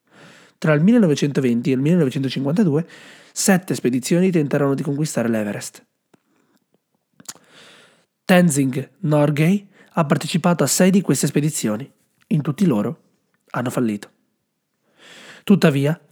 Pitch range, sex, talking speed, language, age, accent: 135-175 Hz, male, 100 wpm, Italian, 30-49, native